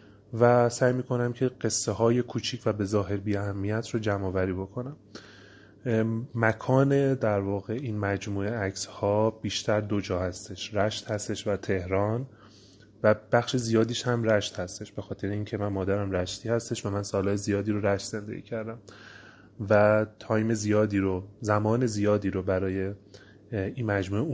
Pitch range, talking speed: 100-110 Hz, 150 wpm